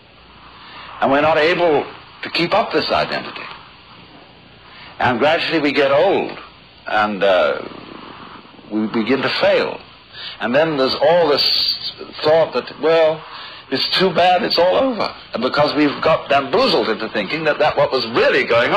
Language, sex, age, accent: English, male, 60-79, American